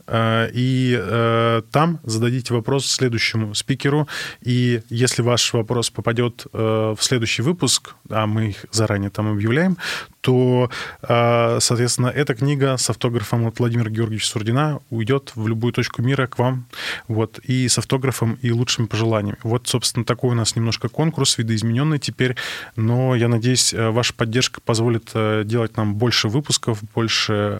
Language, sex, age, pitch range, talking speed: Russian, male, 20-39, 110-125 Hz, 135 wpm